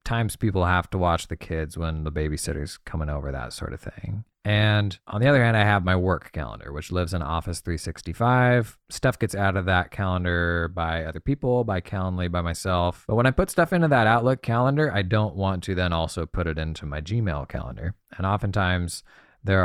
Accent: American